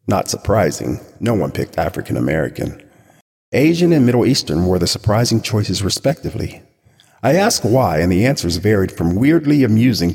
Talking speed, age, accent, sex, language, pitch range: 150 wpm, 50-69, American, male, English, 90-120 Hz